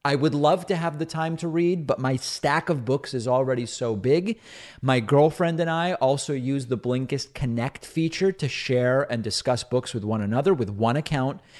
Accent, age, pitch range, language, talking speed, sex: American, 30-49, 120-155 Hz, English, 200 wpm, male